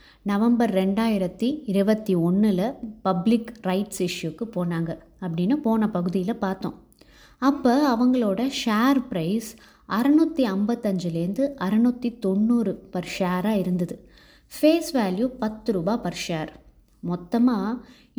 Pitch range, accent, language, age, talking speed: 185-240 Hz, native, Tamil, 20-39, 100 wpm